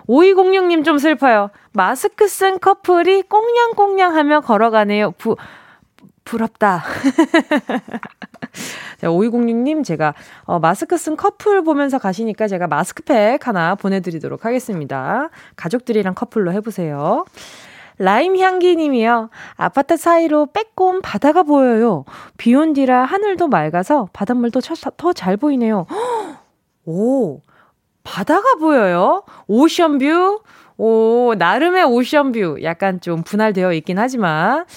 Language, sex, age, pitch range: Korean, female, 20-39, 210-315 Hz